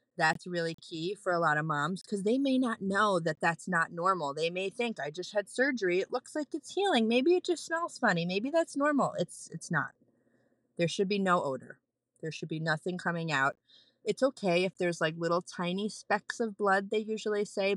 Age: 30-49